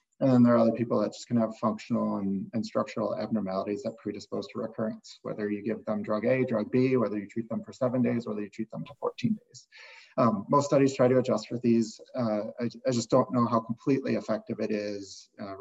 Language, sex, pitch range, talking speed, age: English, male, 105-125 Hz, 235 wpm, 30-49